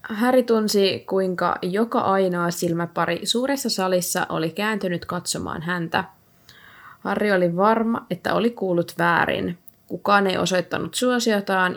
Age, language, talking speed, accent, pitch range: 20-39, Finnish, 115 wpm, native, 165-200 Hz